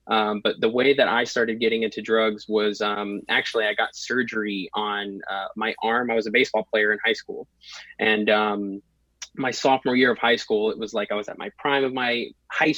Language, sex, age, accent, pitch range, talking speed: English, male, 20-39, American, 110-130 Hz, 220 wpm